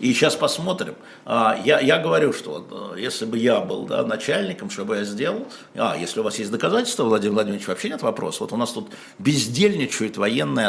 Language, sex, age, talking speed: Russian, male, 60-79, 195 wpm